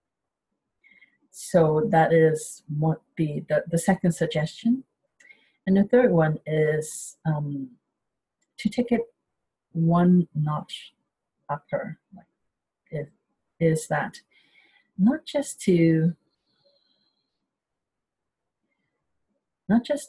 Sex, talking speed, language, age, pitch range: female, 85 wpm, English, 50-69, 155-190 Hz